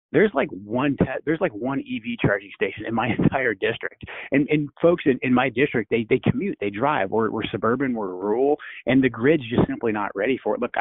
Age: 30-49